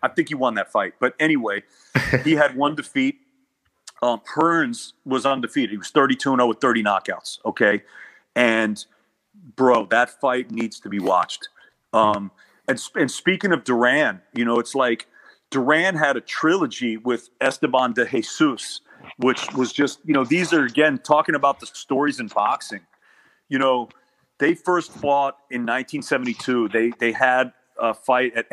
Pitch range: 115-145 Hz